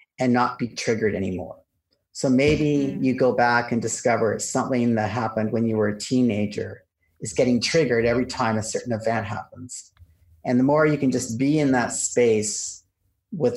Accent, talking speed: American, 175 wpm